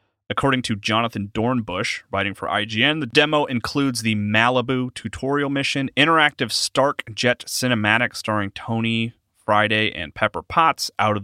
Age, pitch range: 30-49, 105-140 Hz